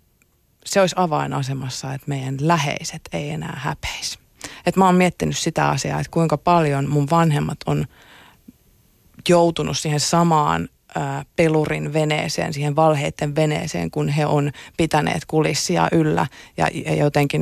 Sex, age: female, 30-49